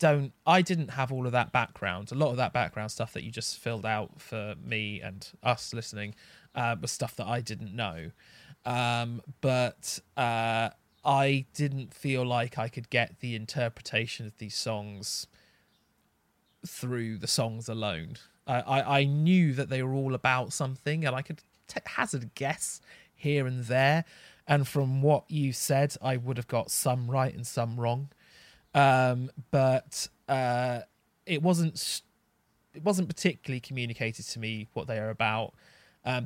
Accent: British